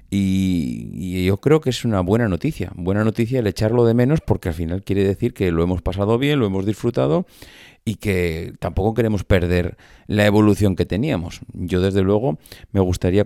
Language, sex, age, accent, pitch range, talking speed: Spanish, male, 30-49, Spanish, 90-120 Hz, 185 wpm